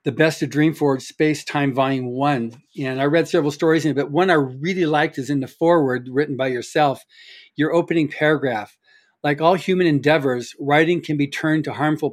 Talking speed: 195 wpm